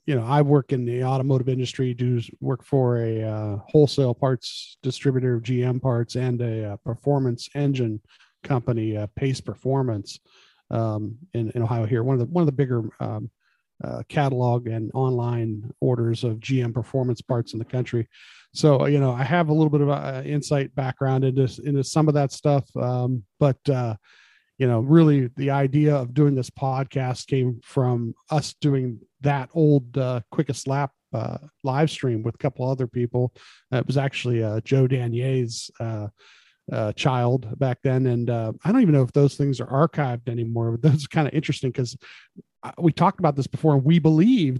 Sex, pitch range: male, 120-140 Hz